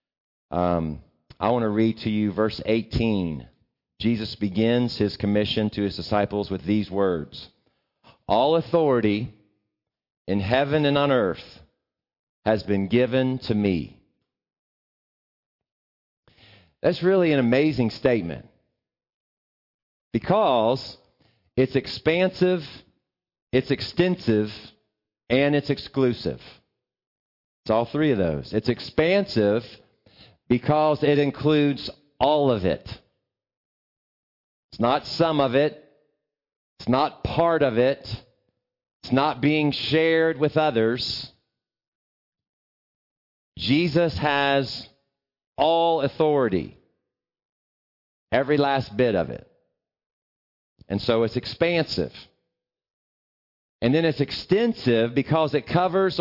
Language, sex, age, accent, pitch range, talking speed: English, male, 40-59, American, 105-150 Hz, 100 wpm